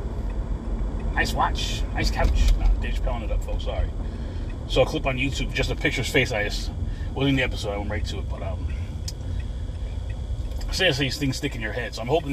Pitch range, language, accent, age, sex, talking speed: 75-110 Hz, English, American, 30-49, male, 215 wpm